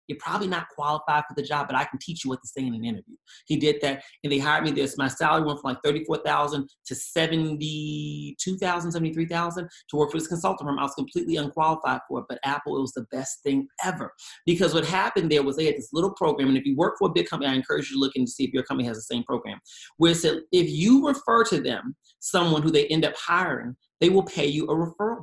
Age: 30-49